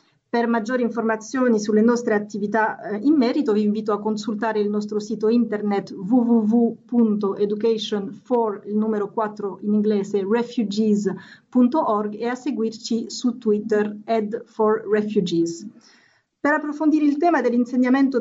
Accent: Italian